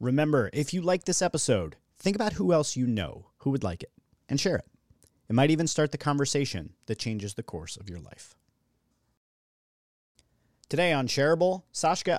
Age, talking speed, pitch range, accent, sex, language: 30-49, 175 wpm, 105-140 Hz, American, male, English